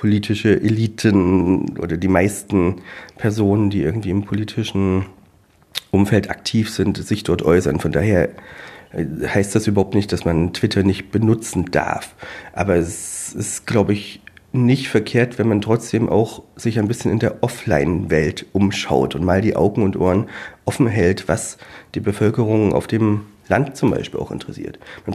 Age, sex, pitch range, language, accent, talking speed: 40-59, male, 100-125 Hz, German, German, 155 wpm